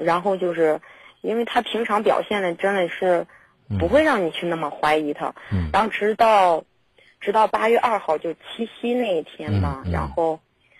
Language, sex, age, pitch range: Chinese, female, 30-49, 155-210 Hz